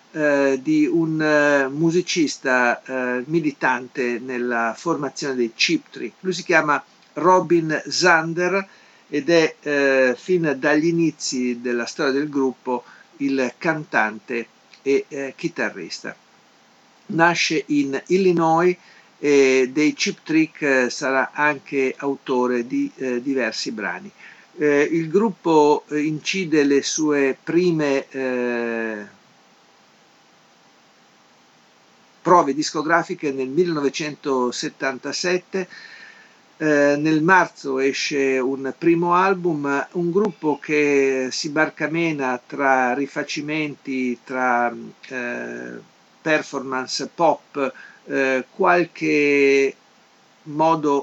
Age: 50-69